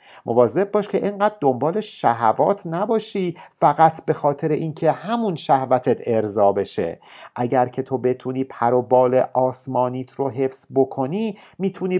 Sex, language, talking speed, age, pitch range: male, Persian, 135 wpm, 50-69, 125-185 Hz